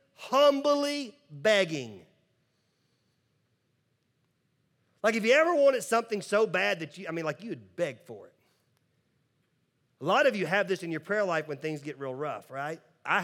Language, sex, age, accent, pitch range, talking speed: English, male, 40-59, American, 125-180 Hz, 170 wpm